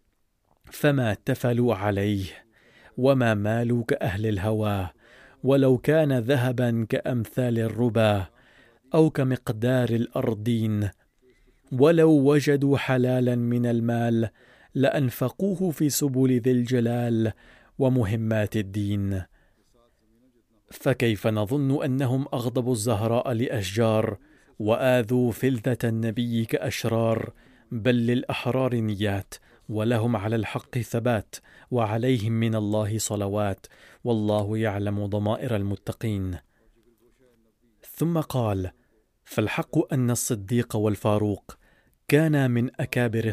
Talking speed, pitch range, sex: 85 wpm, 110-130 Hz, male